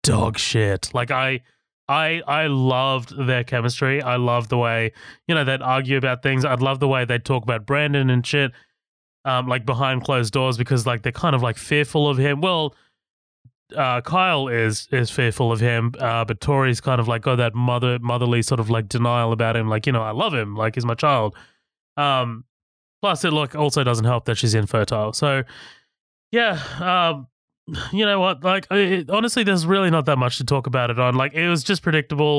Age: 20-39